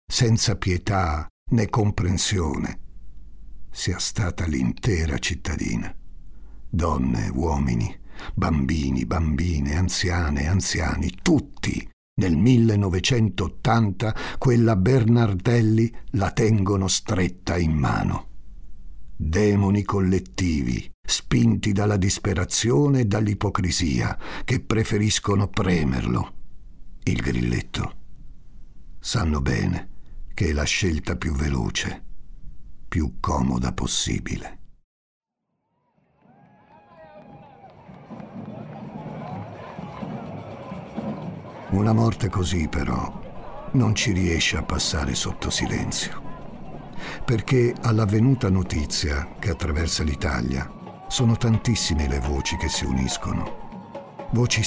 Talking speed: 80 wpm